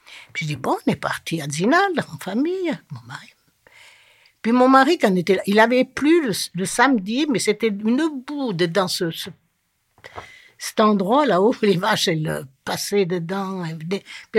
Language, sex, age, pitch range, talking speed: French, female, 60-79, 180-250 Hz, 185 wpm